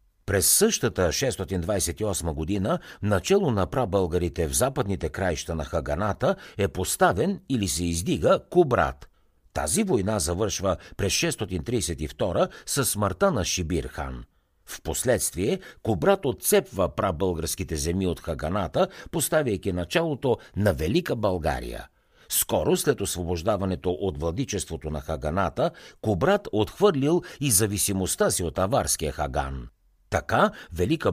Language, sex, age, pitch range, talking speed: Bulgarian, male, 60-79, 85-110 Hz, 110 wpm